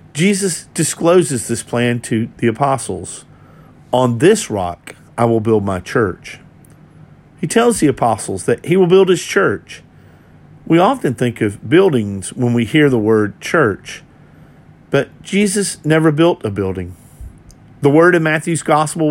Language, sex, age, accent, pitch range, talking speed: English, male, 50-69, American, 115-165 Hz, 150 wpm